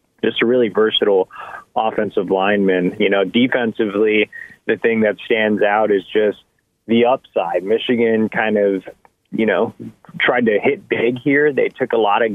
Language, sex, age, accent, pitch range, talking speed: English, male, 30-49, American, 100-115 Hz, 160 wpm